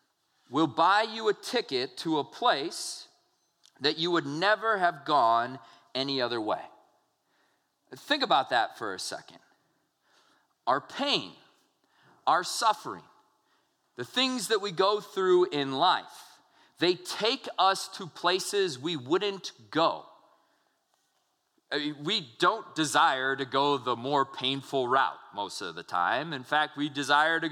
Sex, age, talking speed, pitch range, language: male, 40-59, 135 wpm, 150-230 Hz, English